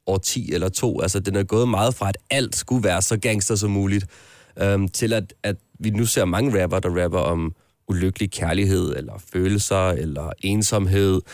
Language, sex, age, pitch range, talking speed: Danish, male, 30-49, 95-110 Hz, 190 wpm